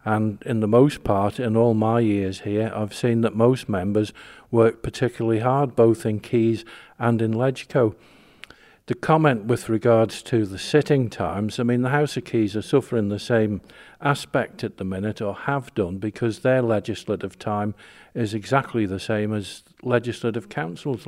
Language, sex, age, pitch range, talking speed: English, male, 50-69, 105-125 Hz, 170 wpm